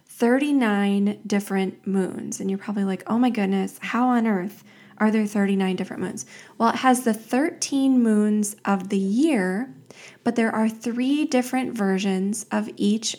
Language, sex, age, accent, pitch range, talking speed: English, female, 20-39, American, 200-240 Hz, 160 wpm